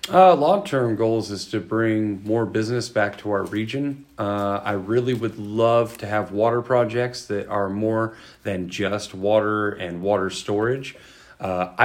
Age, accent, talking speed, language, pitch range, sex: 40-59, American, 155 wpm, English, 100-115 Hz, male